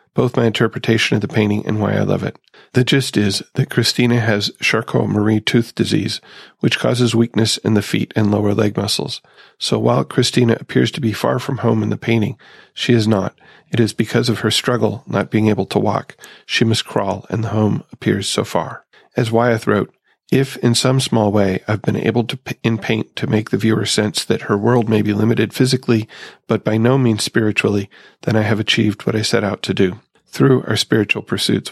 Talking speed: 210 wpm